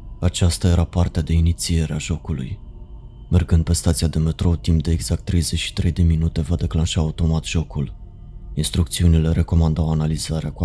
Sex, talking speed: male, 145 wpm